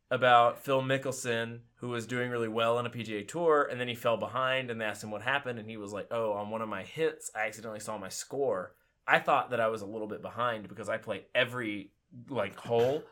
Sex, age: male, 20-39